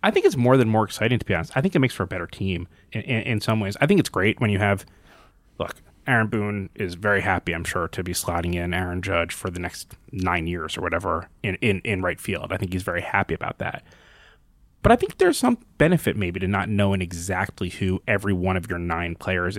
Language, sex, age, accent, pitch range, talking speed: English, male, 20-39, American, 95-125 Hz, 250 wpm